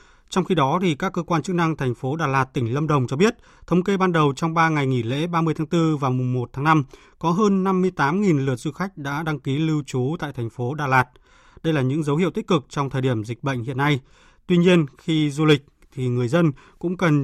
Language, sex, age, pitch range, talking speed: Vietnamese, male, 20-39, 135-175 Hz, 260 wpm